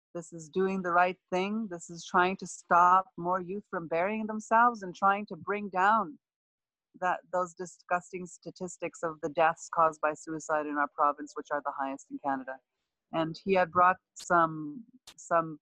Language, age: English, 30-49